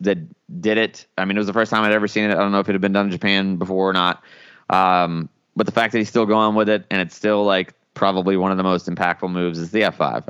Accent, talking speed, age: American, 305 wpm, 20-39